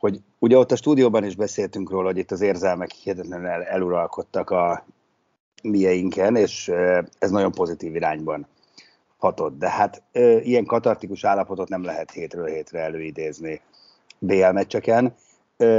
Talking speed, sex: 120 wpm, male